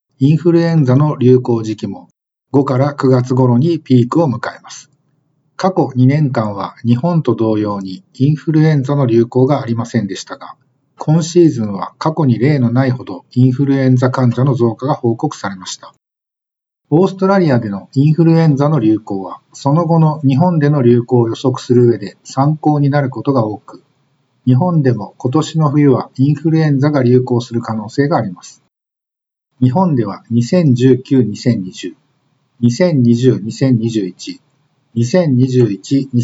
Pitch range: 120-150 Hz